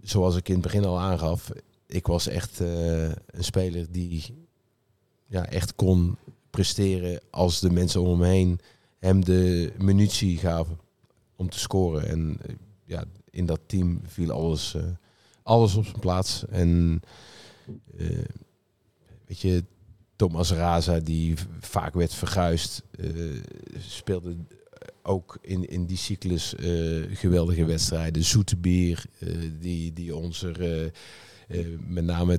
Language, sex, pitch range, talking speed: Dutch, male, 85-100 Hz, 135 wpm